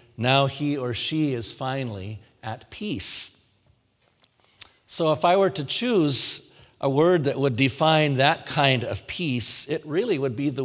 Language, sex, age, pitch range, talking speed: English, male, 50-69, 115-150 Hz, 160 wpm